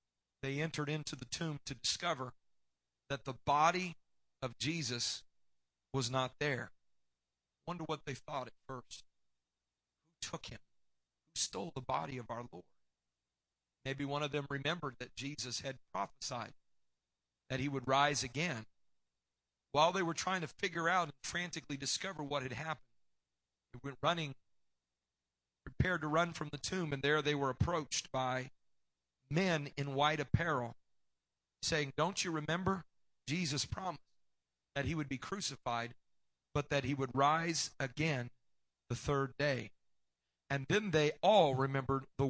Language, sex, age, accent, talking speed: English, male, 40-59, American, 145 wpm